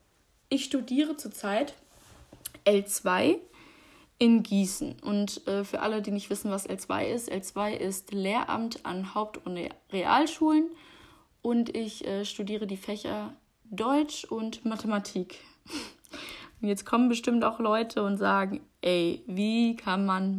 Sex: female